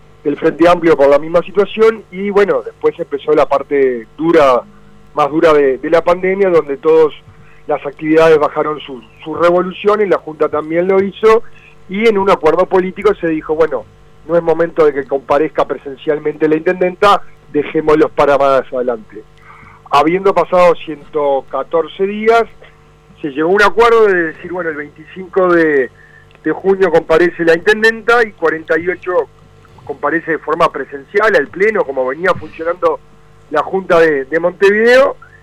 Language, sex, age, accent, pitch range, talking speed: Spanish, male, 40-59, Argentinian, 150-190 Hz, 155 wpm